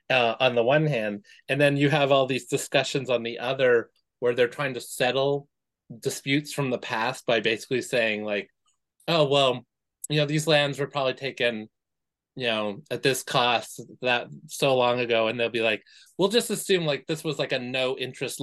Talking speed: 195 wpm